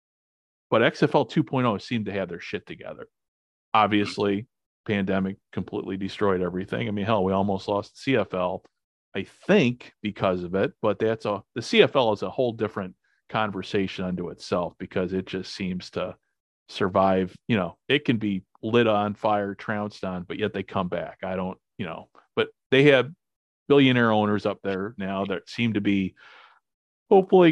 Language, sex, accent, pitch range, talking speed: English, male, American, 100-140 Hz, 165 wpm